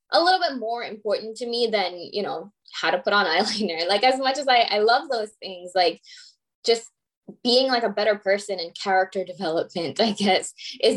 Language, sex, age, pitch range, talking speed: English, female, 10-29, 185-245 Hz, 200 wpm